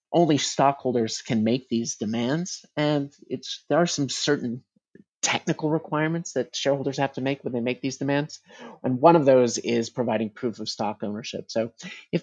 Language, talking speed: English, 175 wpm